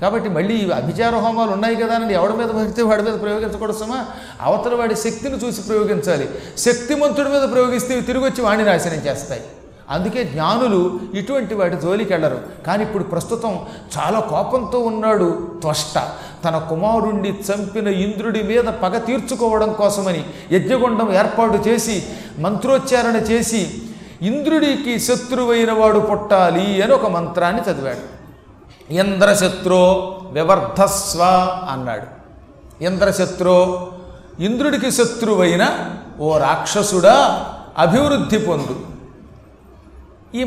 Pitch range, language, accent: 185-235 Hz, Telugu, native